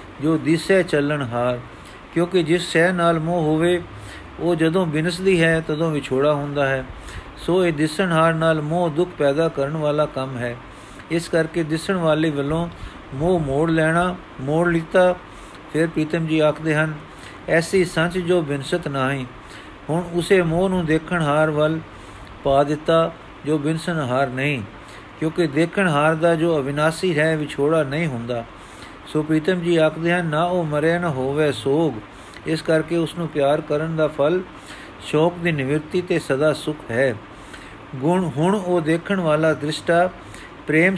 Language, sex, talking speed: Punjabi, male, 155 wpm